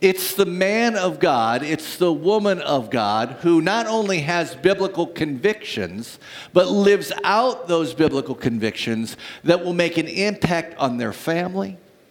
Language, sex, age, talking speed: English, male, 50-69, 150 wpm